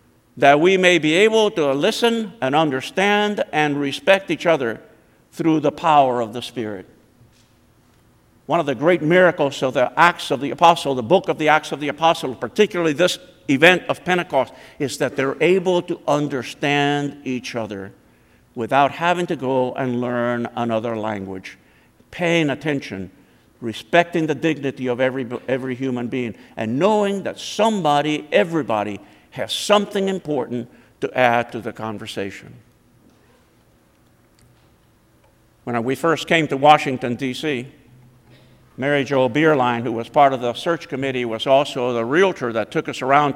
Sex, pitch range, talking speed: male, 120-155 Hz, 150 wpm